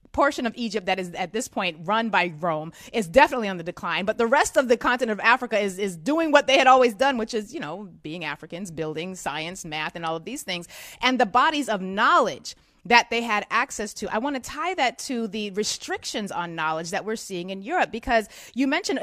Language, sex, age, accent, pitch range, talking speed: English, female, 30-49, American, 190-255 Hz, 235 wpm